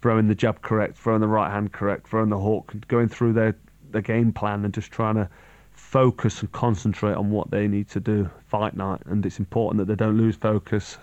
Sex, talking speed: male, 225 wpm